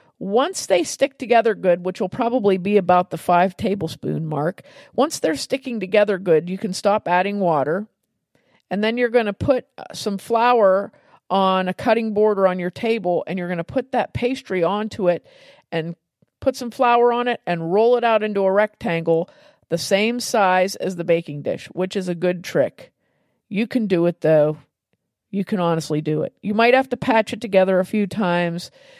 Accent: American